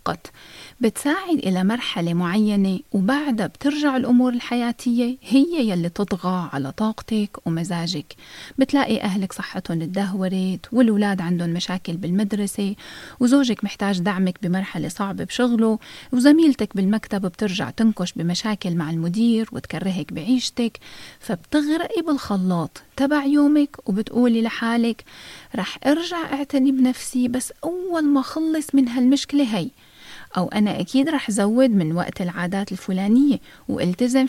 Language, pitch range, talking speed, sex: Arabic, 190-270 Hz, 110 wpm, female